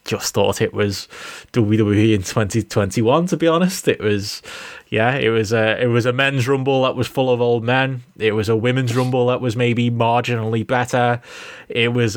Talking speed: 190 wpm